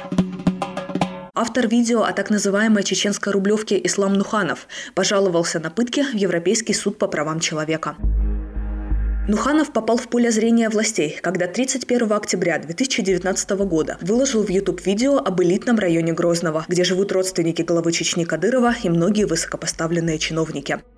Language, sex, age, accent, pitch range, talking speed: Russian, female, 20-39, native, 170-220 Hz, 135 wpm